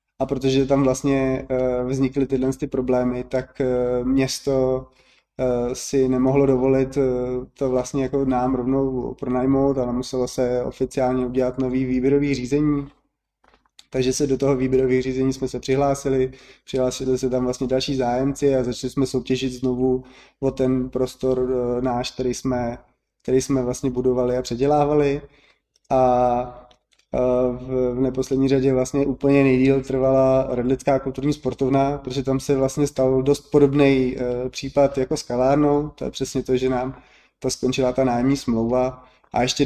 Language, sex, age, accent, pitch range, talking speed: Czech, male, 20-39, native, 125-135 Hz, 140 wpm